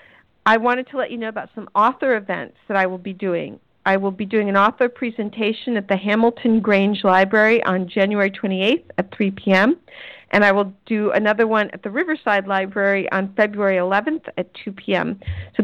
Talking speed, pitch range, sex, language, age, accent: 190 wpm, 190-225 Hz, female, English, 50-69, American